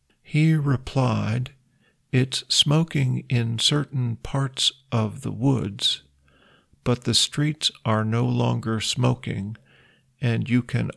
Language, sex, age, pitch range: Thai, male, 50-69, 115-130 Hz